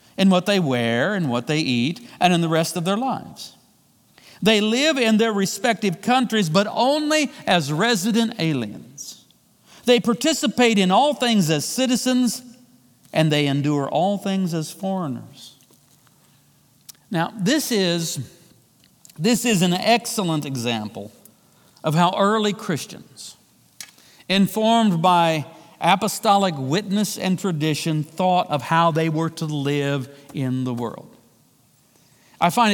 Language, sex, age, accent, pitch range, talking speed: English, male, 50-69, American, 160-220 Hz, 125 wpm